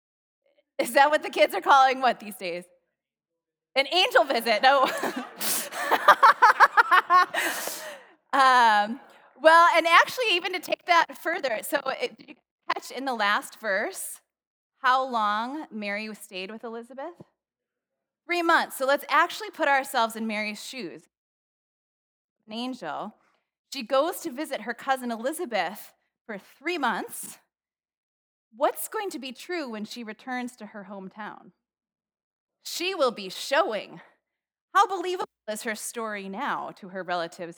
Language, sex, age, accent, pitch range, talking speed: English, female, 20-39, American, 190-290 Hz, 135 wpm